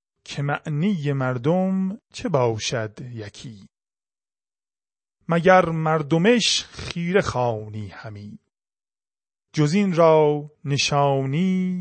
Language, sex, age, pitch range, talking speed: Persian, male, 30-49, 125-180 Hz, 65 wpm